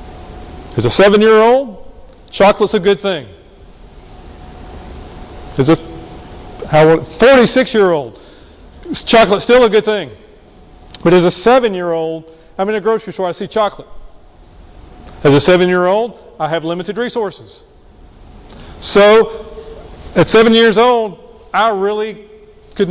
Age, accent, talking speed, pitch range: 40-59, American, 110 wpm, 145-215 Hz